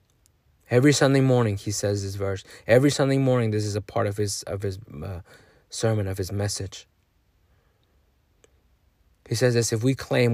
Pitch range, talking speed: 90-110 Hz, 170 wpm